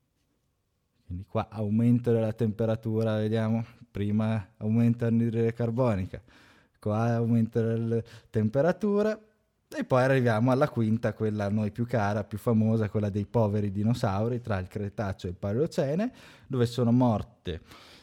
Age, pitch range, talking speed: 20-39, 100-120 Hz, 130 wpm